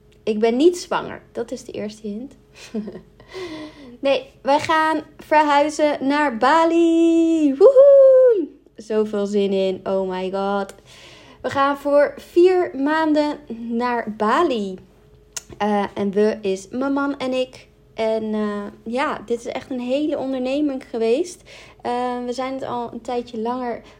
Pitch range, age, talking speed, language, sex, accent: 215-275 Hz, 20-39, 135 wpm, Dutch, female, Dutch